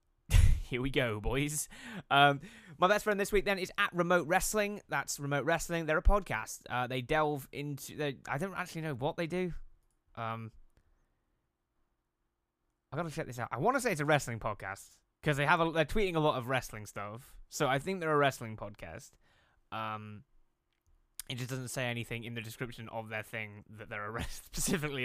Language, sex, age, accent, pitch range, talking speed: English, male, 10-29, British, 105-150 Hz, 200 wpm